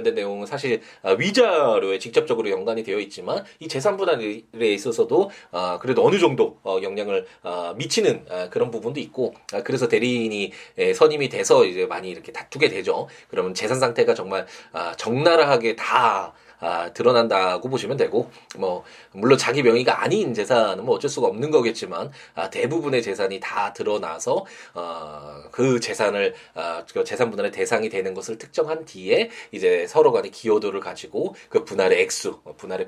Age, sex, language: 20-39, male, Korean